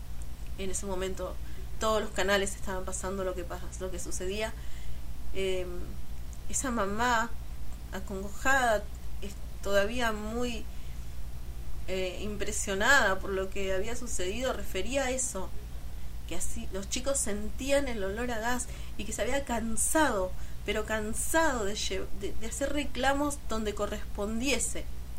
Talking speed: 130 wpm